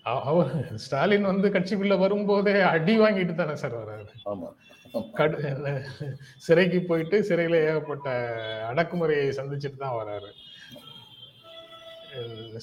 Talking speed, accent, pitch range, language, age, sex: 65 wpm, native, 130-180 Hz, Tamil, 30-49, male